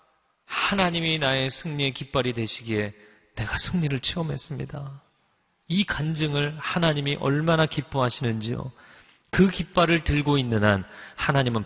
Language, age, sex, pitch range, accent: Korean, 40-59, male, 125-165 Hz, native